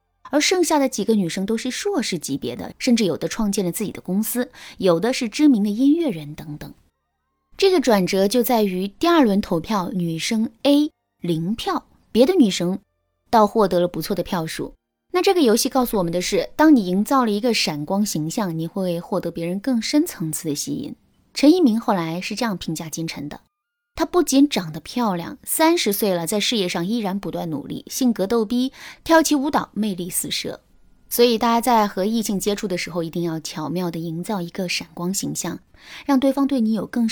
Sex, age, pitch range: female, 20-39, 175-250 Hz